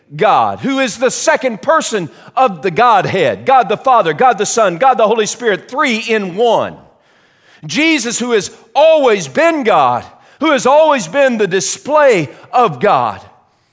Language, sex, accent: English, male, American